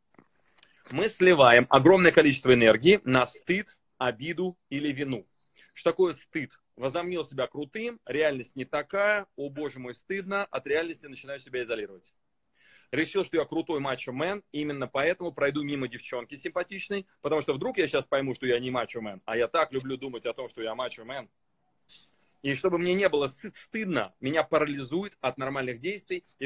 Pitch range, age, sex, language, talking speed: 130-180 Hz, 30-49, male, Russian, 160 wpm